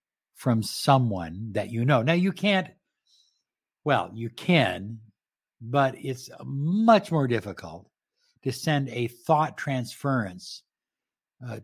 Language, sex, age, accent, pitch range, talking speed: English, male, 60-79, American, 115-160 Hz, 115 wpm